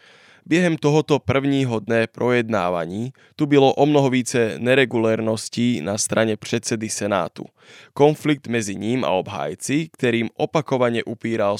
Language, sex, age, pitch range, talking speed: Slovak, male, 20-39, 110-135 Hz, 115 wpm